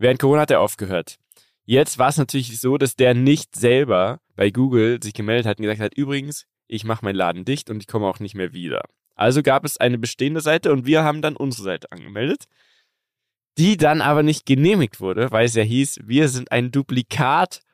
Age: 20-39